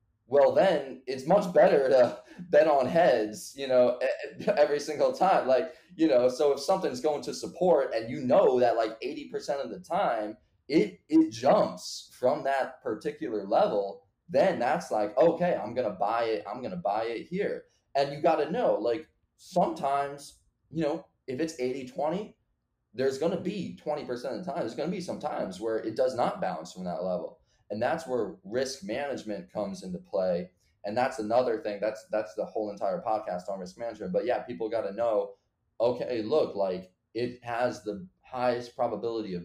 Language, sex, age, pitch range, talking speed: English, male, 20-39, 105-145 Hz, 190 wpm